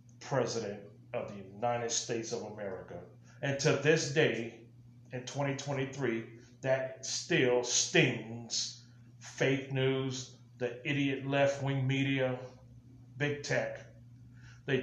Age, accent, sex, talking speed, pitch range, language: 30-49, American, male, 100 wpm, 120-145 Hz, English